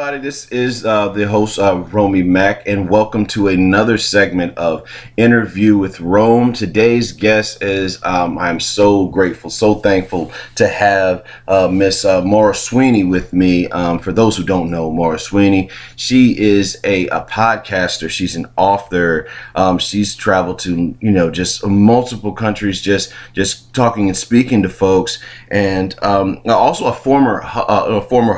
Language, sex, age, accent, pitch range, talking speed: English, male, 30-49, American, 95-110 Hz, 160 wpm